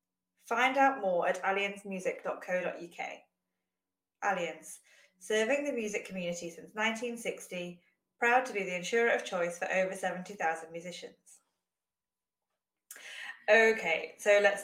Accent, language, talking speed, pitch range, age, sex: British, English, 105 wpm, 180-220 Hz, 20-39, female